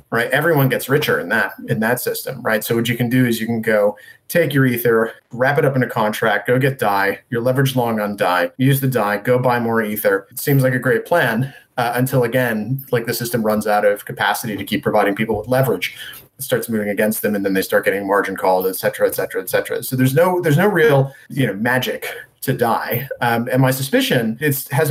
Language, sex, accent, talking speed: English, male, American, 240 wpm